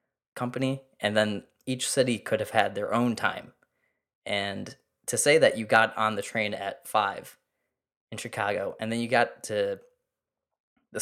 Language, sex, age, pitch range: English, male, 20-39, 110-175 Hz